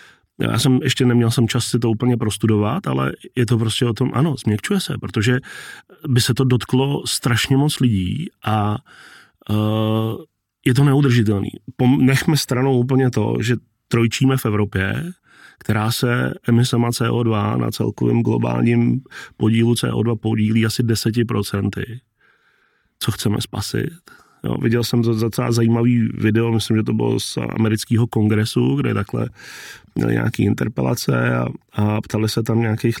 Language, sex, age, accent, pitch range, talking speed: Czech, male, 30-49, native, 105-125 Hz, 145 wpm